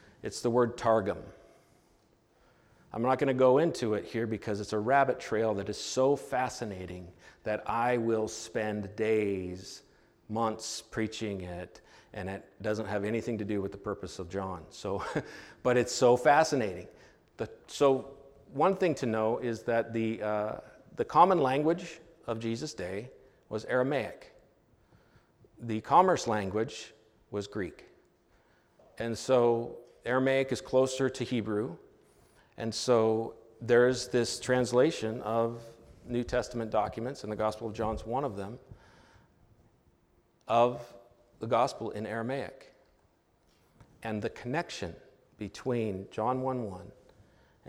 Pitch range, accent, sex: 105-125 Hz, American, male